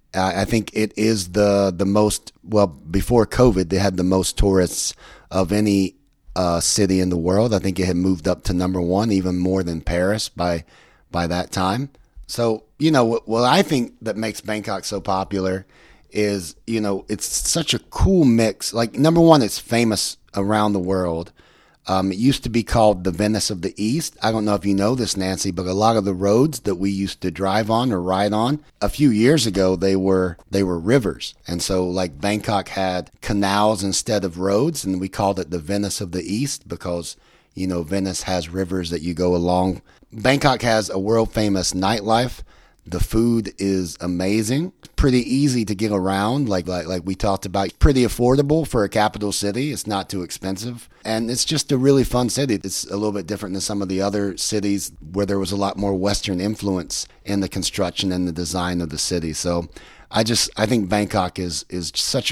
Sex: male